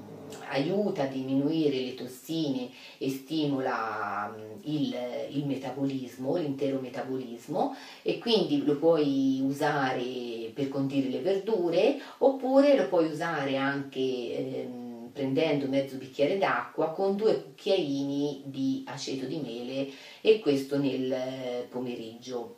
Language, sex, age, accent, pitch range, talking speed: Italian, female, 40-59, native, 130-160 Hz, 110 wpm